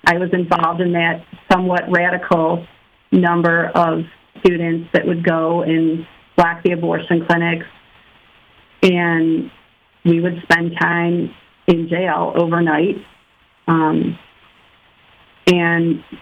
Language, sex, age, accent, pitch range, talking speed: English, female, 40-59, American, 170-190 Hz, 105 wpm